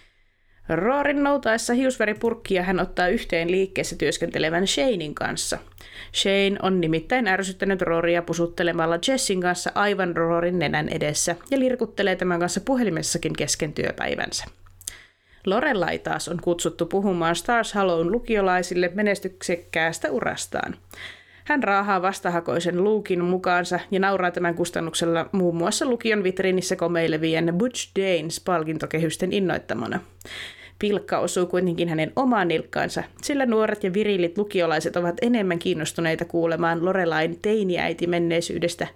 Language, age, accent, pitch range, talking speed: Finnish, 30-49, native, 170-200 Hz, 115 wpm